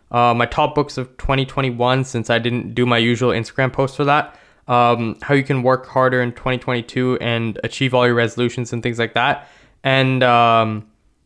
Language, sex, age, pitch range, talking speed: English, male, 20-39, 120-135 Hz, 185 wpm